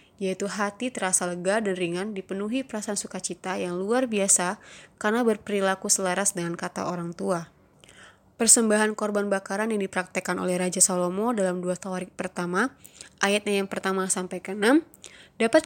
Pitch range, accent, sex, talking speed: 185-215 Hz, native, female, 140 wpm